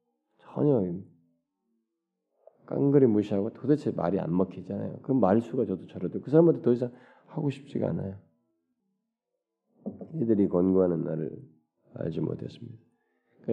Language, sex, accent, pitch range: Korean, male, native, 90-155 Hz